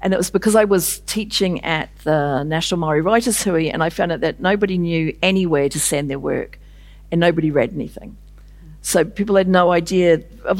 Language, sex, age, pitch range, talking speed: English, female, 50-69, 160-190 Hz, 200 wpm